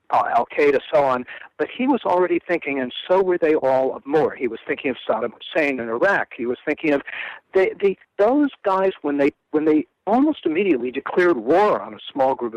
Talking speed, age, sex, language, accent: 210 wpm, 60-79, male, English, American